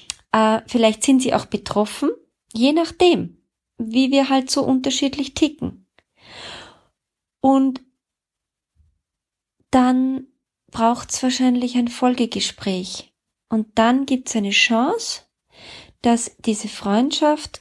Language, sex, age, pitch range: German, female, 30-49, 200-255 Hz